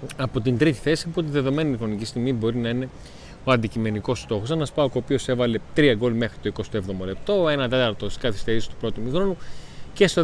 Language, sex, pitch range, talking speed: Greek, male, 115-145 Hz, 205 wpm